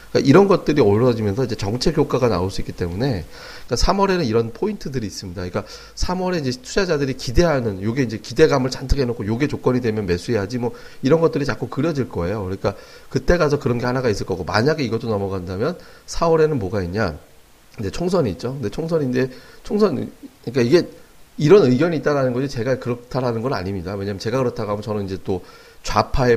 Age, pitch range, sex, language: 30-49, 105-145 Hz, male, Korean